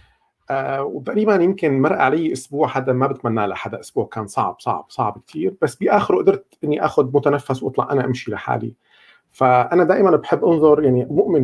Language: Arabic